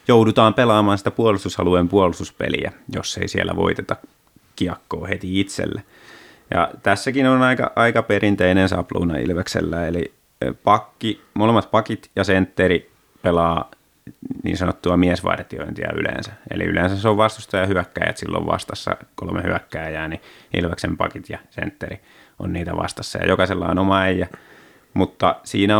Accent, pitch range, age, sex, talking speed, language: native, 90-105 Hz, 30-49, male, 130 wpm, Finnish